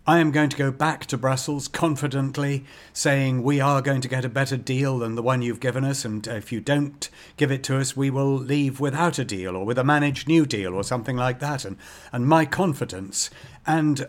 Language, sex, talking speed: English, male, 225 wpm